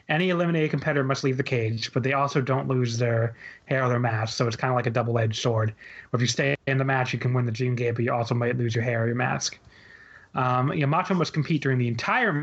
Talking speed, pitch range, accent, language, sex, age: 260 wpm, 125-150 Hz, American, English, male, 30-49